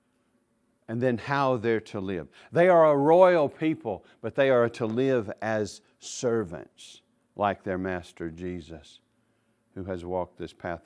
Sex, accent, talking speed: male, American, 150 wpm